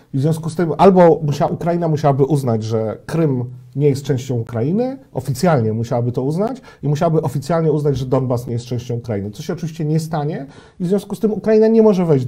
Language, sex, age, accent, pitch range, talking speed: Polish, male, 40-59, native, 135-160 Hz, 210 wpm